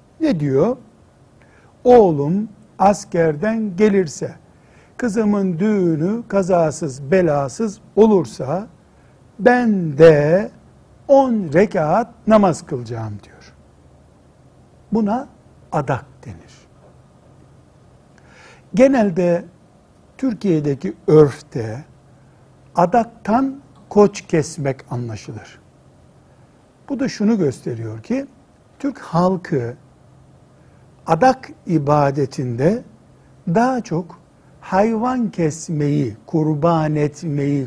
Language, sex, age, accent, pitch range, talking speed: Turkish, male, 60-79, native, 140-205 Hz, 65 wpm